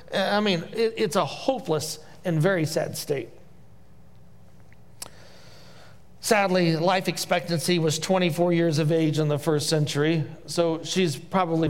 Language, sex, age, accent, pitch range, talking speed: English, male, 40-59, American, 155-195 Hz, 125 wpm